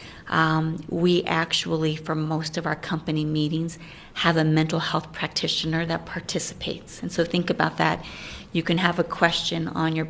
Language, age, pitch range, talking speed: English, 30-49, 160-170 Hz, 165 wpm